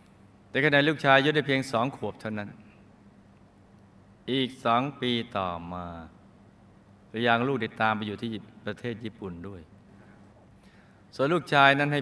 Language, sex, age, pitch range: Thai, male, 20-39, 100-130 Hz